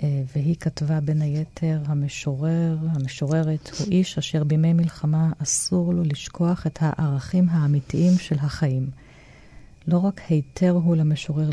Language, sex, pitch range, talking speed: Hebrew, female, 145-170 Hz, 125 wpm